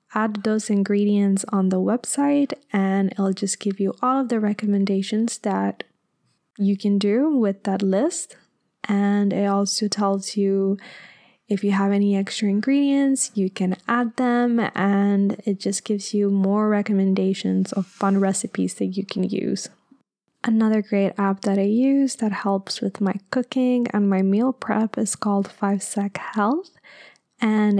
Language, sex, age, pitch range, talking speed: English, female, 10-29, 200-230 Hz, 155 wpm